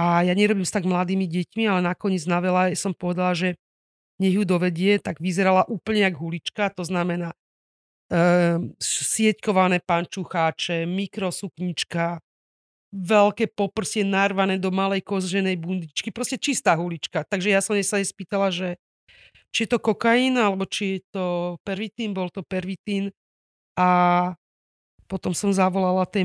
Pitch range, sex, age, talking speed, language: 175-195 Hz, female, 40-59, 145 wpm, Slovak